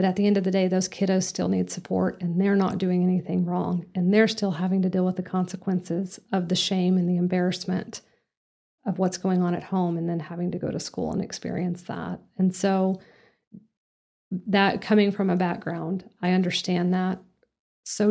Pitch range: 180-195 Hz